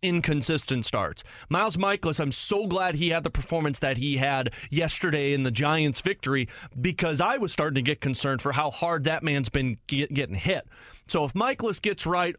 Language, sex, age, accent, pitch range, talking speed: English, male, 30-49, American, 130-180 Hz, 190 wpm